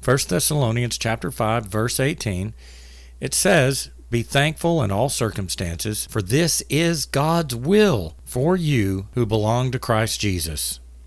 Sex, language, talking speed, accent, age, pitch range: male, English, 135 wpm, American, 50-69, 85-130 Hz